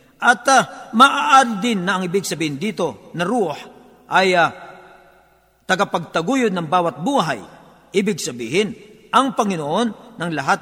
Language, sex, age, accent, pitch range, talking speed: Filipino, male, 50-69, native, 170-235 Hz, 130 wpm